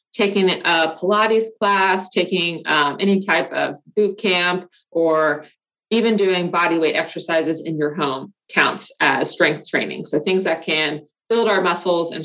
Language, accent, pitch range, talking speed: English, American, 165-195 Hz, 155 wpm